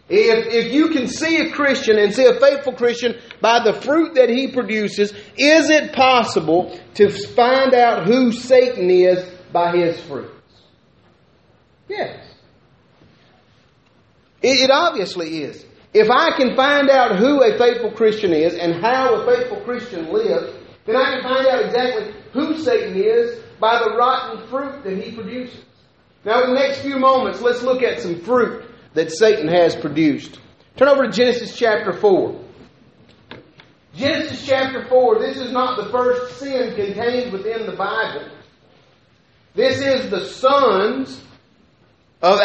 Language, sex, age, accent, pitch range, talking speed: English, male, 40-59, American, 200-265 Hz, 150 wpm